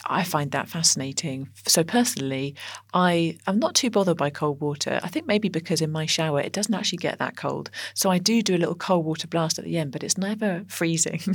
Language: English